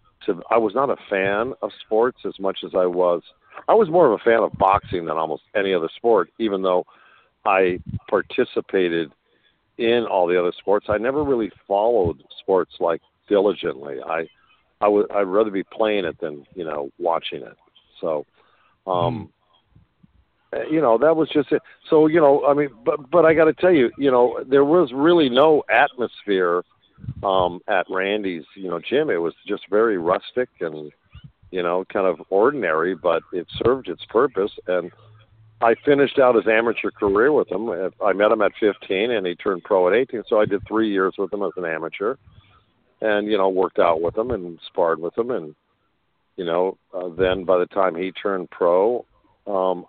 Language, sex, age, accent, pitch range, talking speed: English, male, 50-69, American, 90-140 Hz, 190 wpm